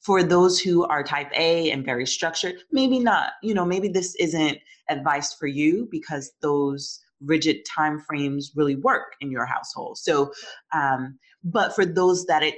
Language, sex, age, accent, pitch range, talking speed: English, female, 30-49, American, 145-180 Hz, 170 wpm